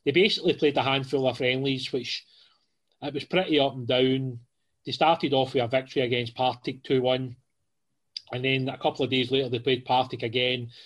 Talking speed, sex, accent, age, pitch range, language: 195 wpm, male, British, 30-49, 125-145 Hz, English